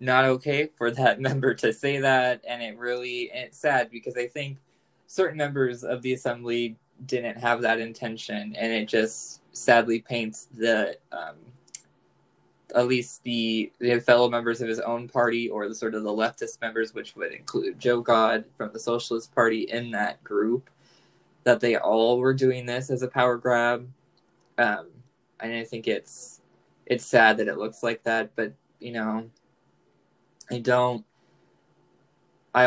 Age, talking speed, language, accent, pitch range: 20-39, 165 wpm, English, American, 115-125 Hz